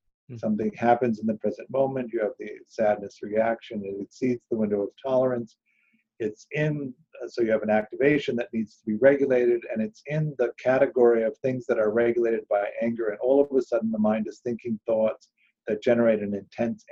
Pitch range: 110-140 Hz